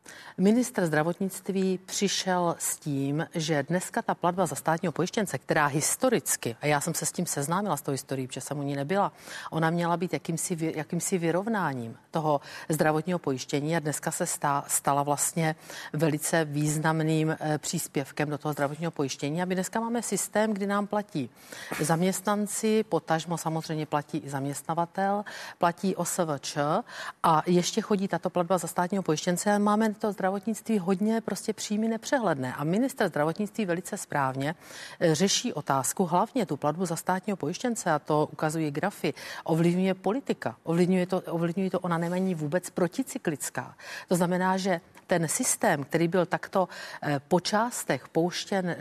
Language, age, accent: Czech, 40-59, native